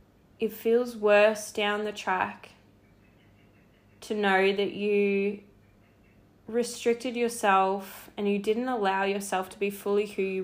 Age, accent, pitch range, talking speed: 10-29, Australian, 185-210 Hz, 125 wpm